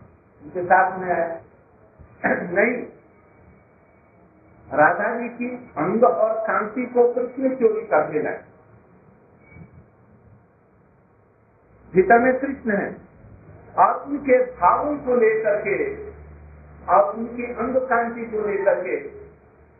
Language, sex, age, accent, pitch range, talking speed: Hindi, male, 50-69, native, 185-245 Hz, 85 wpm